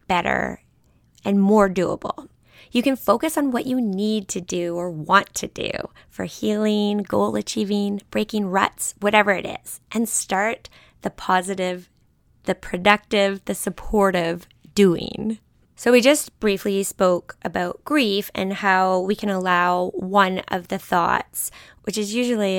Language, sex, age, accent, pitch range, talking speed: English, female, 20-39, American, 185-215 Hz, 145 wpm